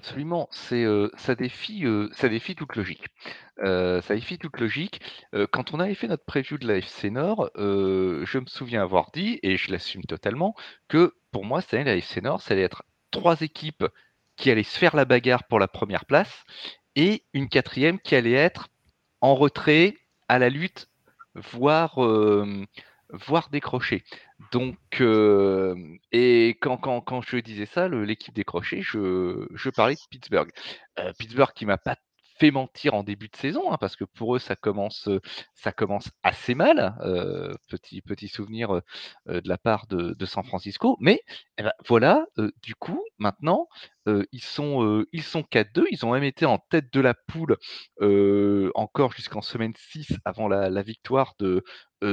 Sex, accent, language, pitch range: male, French, French, 100-145 Hz